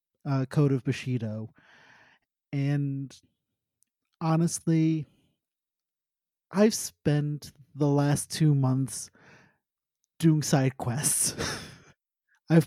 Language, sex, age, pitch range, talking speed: English, male, 30-49, 130-155 Hz, 80 wpm